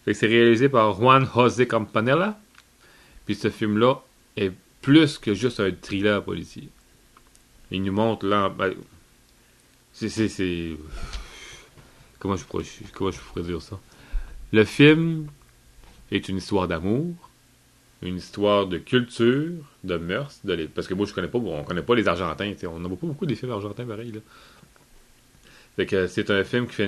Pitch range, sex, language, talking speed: 95-120 Hz, male, English, 165 wpm